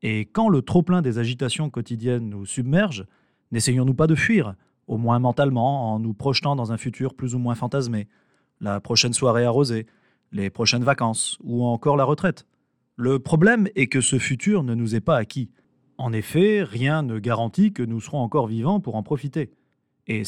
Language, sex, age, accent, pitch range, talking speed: French, male, 30-49, French, 115-145 Hz, 185 wpm